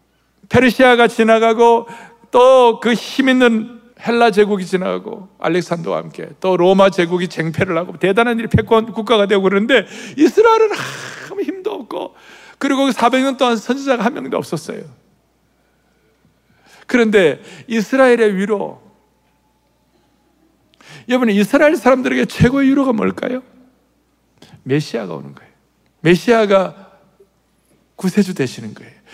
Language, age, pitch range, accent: Korean, 60-79, 155-235 Hz, native